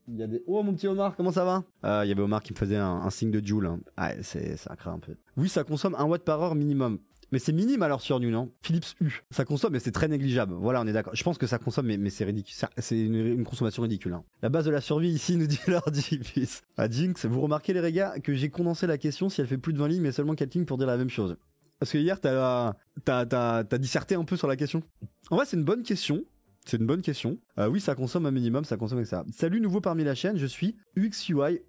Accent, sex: French, male